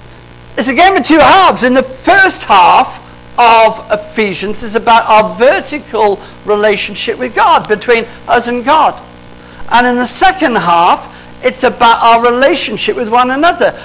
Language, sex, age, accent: English, male, 50-69, British